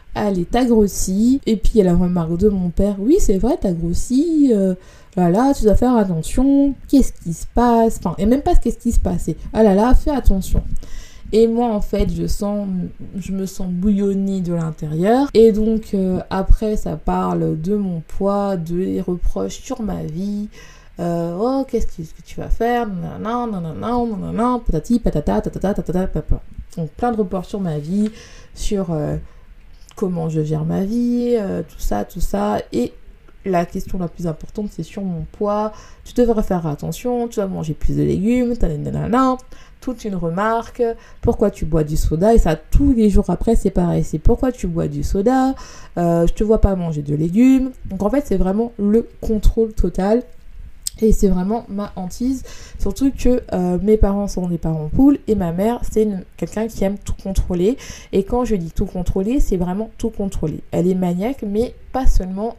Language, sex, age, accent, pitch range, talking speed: French, female, 20-39, French, 175-230 Hz, 195 wpm